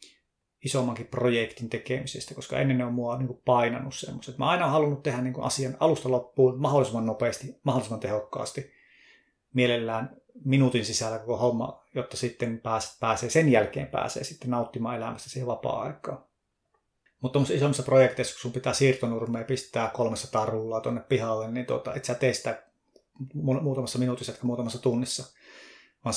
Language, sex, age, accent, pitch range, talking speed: Finnish, male, 30-49, native, 120-135 Hz, 155 wpm